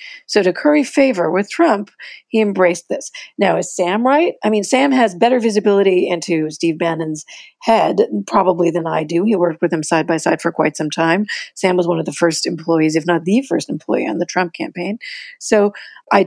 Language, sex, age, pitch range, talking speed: English, female, 40-59, 175-255 Hz, 205 wpm